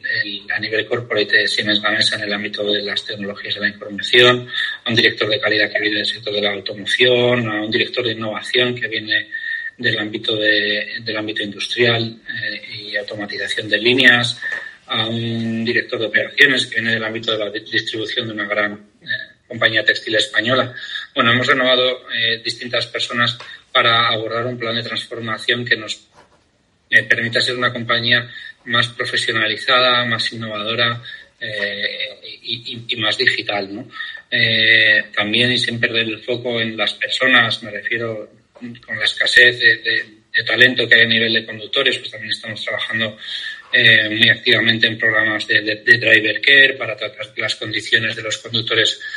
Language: Spanish